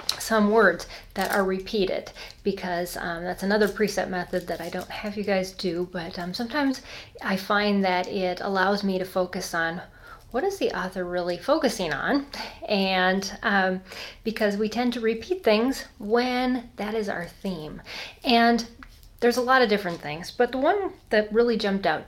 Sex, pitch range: female, 185-240 Hz